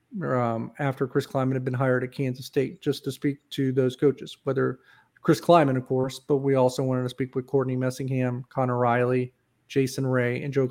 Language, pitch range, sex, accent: English, 130-145 Hz, male, American